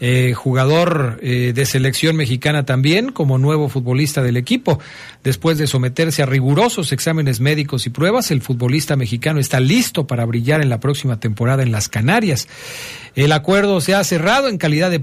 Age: 50-69